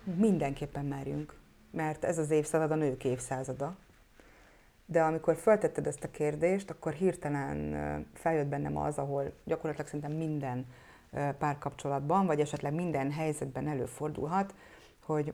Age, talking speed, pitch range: 30-49, 120 wpm, 145-180 Hz